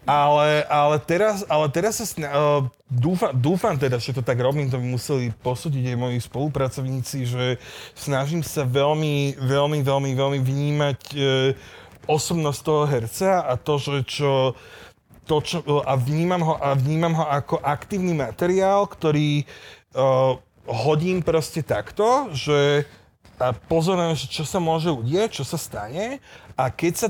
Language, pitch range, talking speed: Slovak, 135-170 Hz, 125 wpm